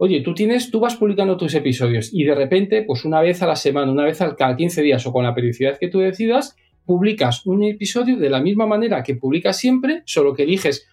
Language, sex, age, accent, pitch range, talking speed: Spanish, male, 40-59, Spanish, 140-205 Hz, 230 wpm